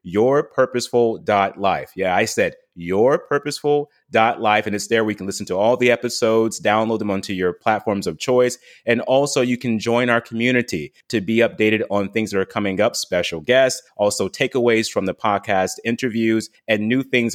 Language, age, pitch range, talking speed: English, 30-49, 100-130 Hz, 175 wpm